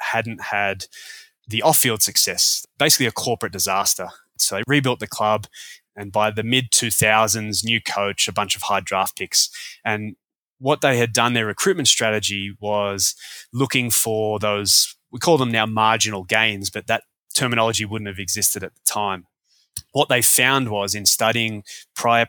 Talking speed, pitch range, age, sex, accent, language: 165 wpm, 105-120 Hz, 20-39, male, Australian, English